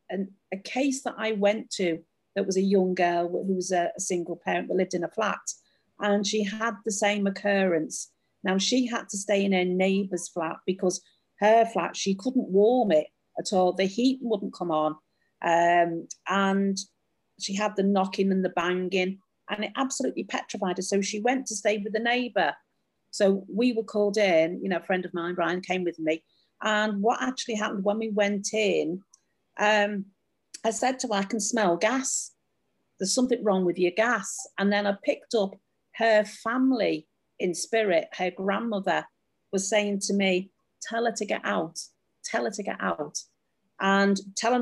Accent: British